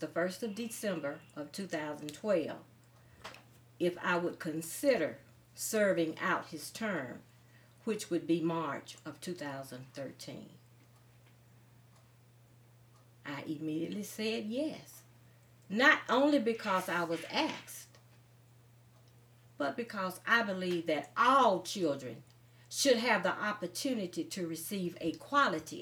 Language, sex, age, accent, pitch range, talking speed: English, female, 40-59, American, 120-185 Hz, 105 wpm